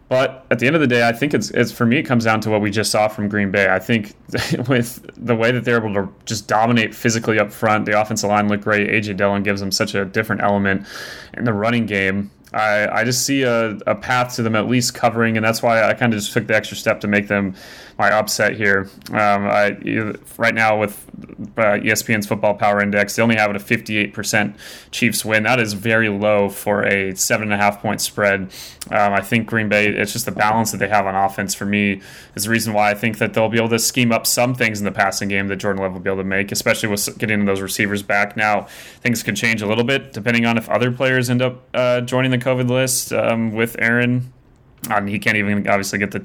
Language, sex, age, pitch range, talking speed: English, male, 20-39, 100-120 Hz, 250 wpm